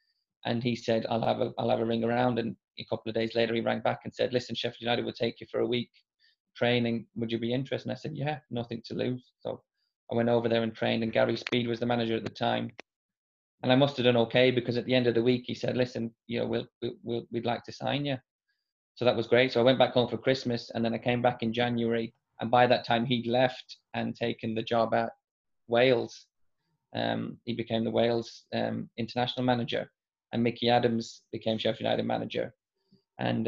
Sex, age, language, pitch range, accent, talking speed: male, 20-39, English, 115-125 Hz, British, 235 wpm